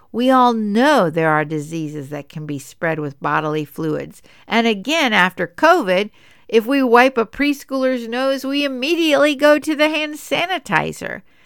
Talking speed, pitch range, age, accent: 155 wpm, 170-255 Hz, 60-79, American